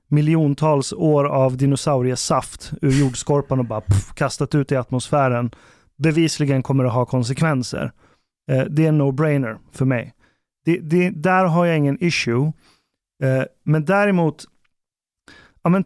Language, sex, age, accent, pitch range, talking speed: Swedish, male, 30-49, native, 135-165 Hz, 135 wpm